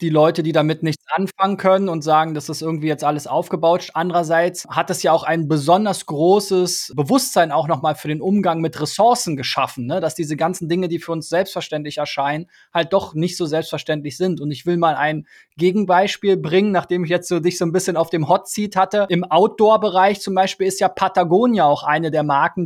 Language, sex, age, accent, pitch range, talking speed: German, male, 20-39, German, 160-190 Hz, 210 wpm